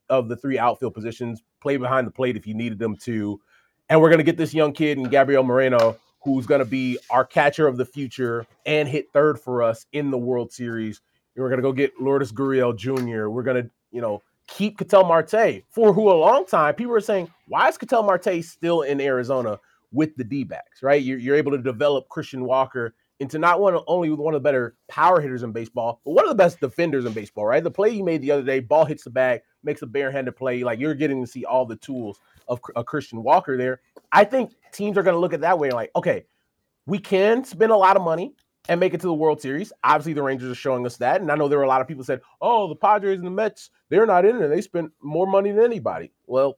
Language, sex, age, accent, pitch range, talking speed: English, male, 30-49, American, 125-165 Hz, 250 wpm